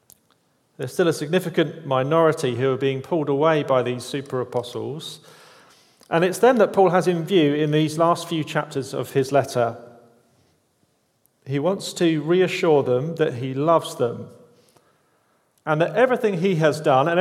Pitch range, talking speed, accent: 120-160 Hz, 155 wpm, British